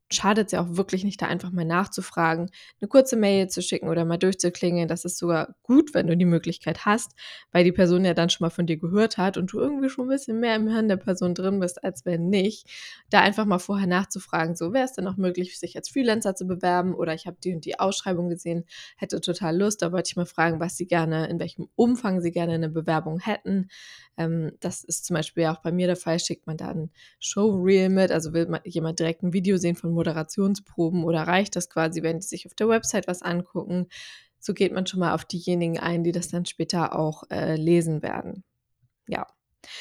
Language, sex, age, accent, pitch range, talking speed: German, female, 20-39, German, 170-200 Hz, 230 wpm